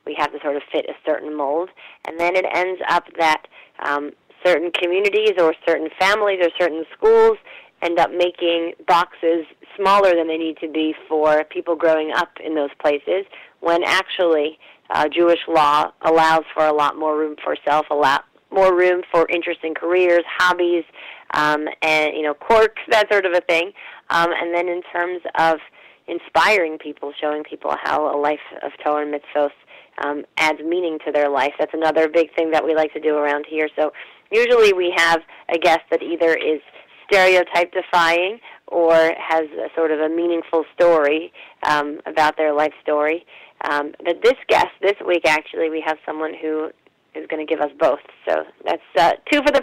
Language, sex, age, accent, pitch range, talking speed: English, female, 30-49, American, 155-175 Hz, 185 wpm